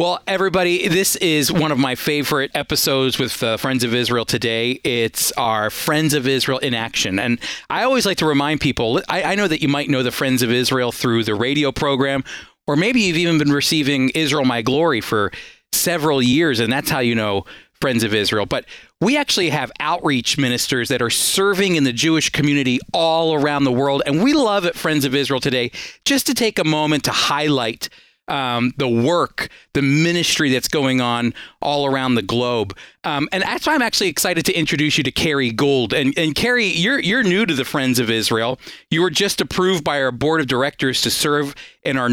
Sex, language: male, English